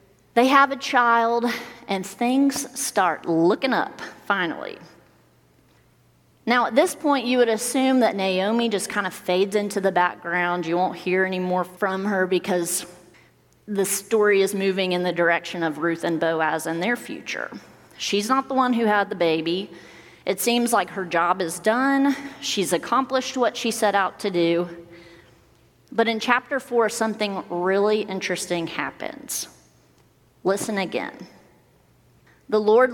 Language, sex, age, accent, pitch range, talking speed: English, female, 30-49, American, 180-245 Hz, 150 wpm